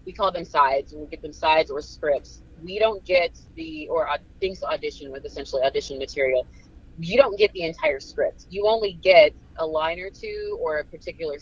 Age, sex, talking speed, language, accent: 20-39, female, 200 wpm, English, American